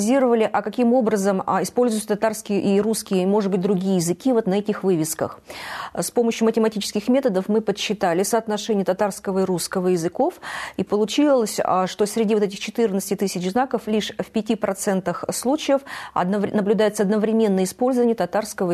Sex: female